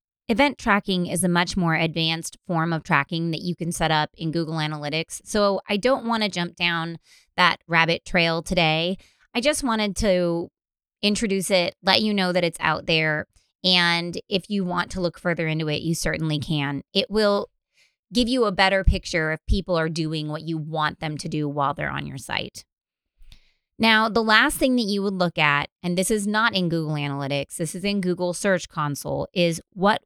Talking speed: 200 wpm